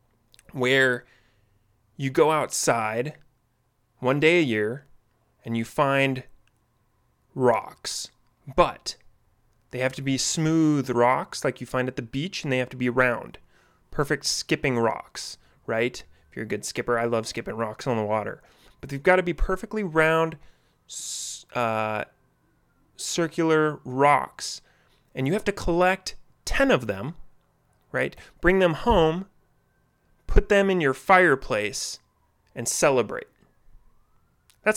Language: English